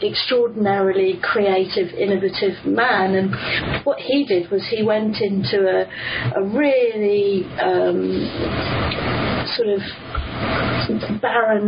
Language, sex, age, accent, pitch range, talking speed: English, female, 40-59, British, 190-235 Hz, 100 wpm